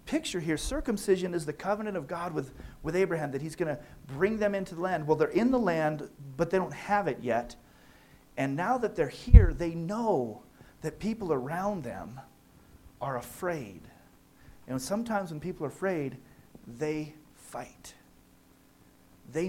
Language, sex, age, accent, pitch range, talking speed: English, male, 40-59, American, 130-180 Hz, 165 wpm